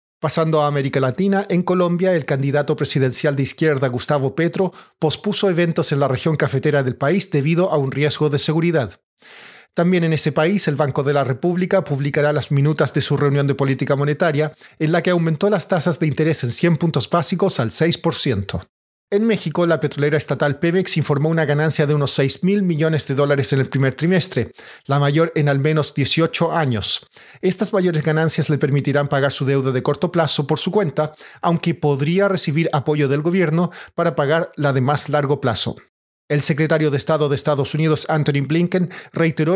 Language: Spanish